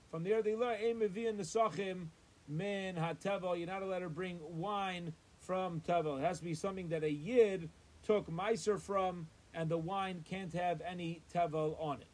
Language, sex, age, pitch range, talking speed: English, male, 30-49, 145-185 Hz, 140 wpm